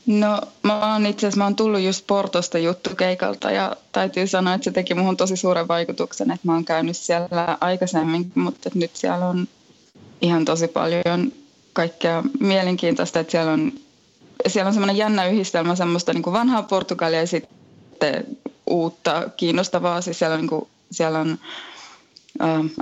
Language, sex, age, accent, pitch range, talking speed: Finnish, female, 20-39, native, 170-200 Hz, 160 wpm